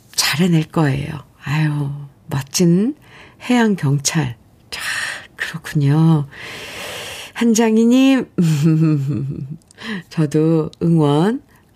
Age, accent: 50-69, native